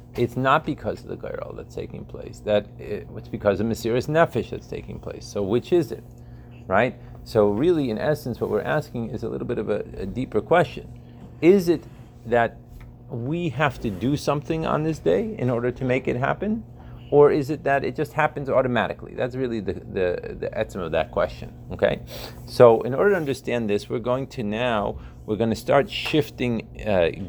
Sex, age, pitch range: male, 40-59, 110-145 Hz